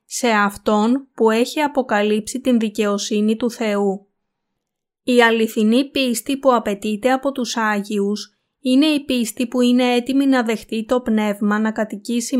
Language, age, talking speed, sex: Greek, 20-39, 140 wpm, female